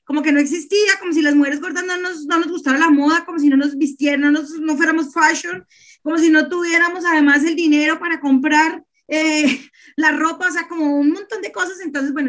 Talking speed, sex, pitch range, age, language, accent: 230 wpm, female, 275-320 Hz, 30-49, Spanish, Colombian